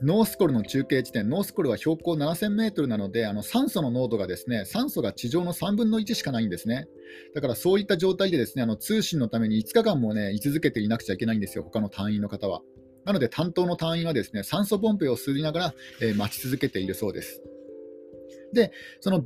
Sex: male